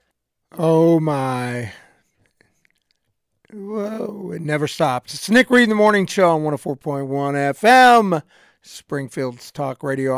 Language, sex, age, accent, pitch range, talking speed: English, male, 50-69, American, 140-200 Hz, 110 wpm